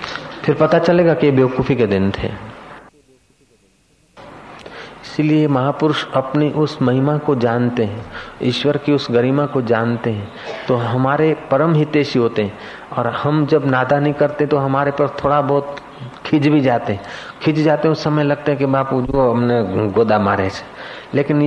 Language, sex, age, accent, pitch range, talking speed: Hindi, male, 40-59, native, 120-150 Hz, 160 wpm